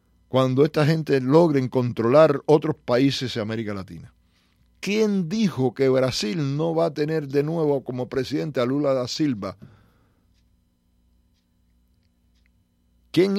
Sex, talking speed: male, 120 wpm